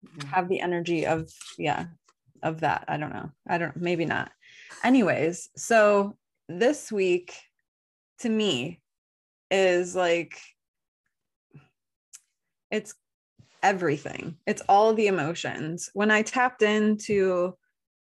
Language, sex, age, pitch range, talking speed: English, female, 20-39, 170-200 Hz, 110 wpm